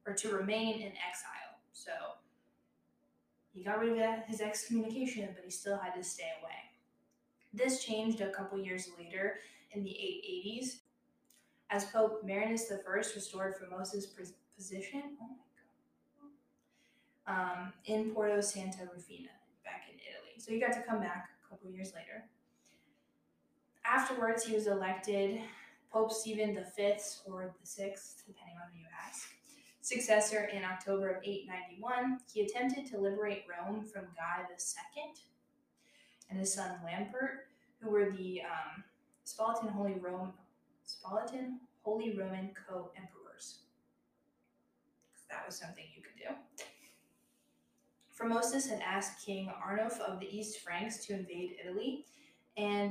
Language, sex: English, female